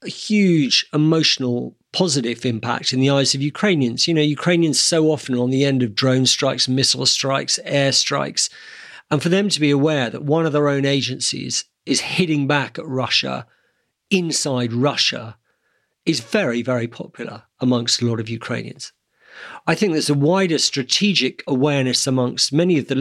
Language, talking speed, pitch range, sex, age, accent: English, 170 wpm, 120-150 Hz, male, 50-69, British